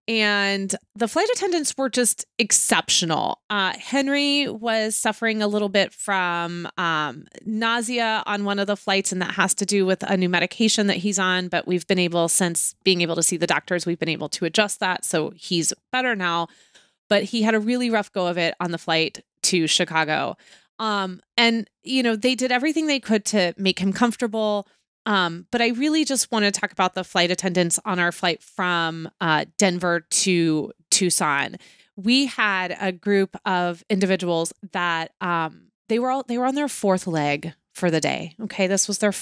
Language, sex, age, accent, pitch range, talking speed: English, female, 30-49, American, 175-220 Hz, 195 wpm